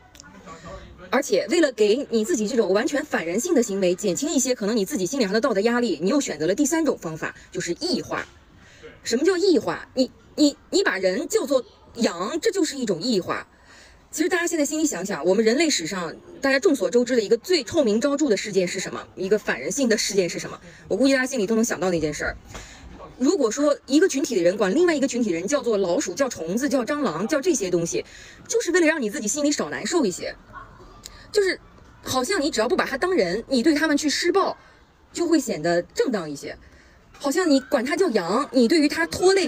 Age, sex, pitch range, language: 20-39, female, 210-315 Hz, Chinese